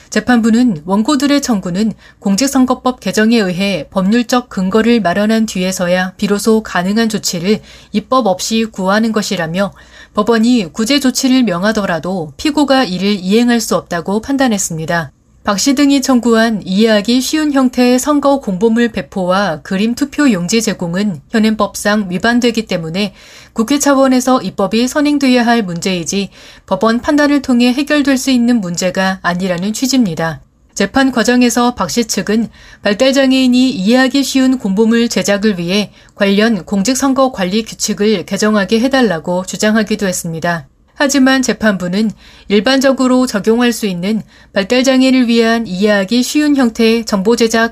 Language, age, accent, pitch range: Korean, 30-49, native, 195-255 Hz